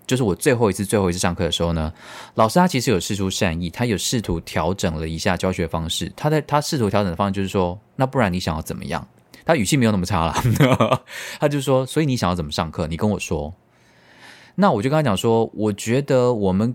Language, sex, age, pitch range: Chinese, male, 20-39, 90-125 Hz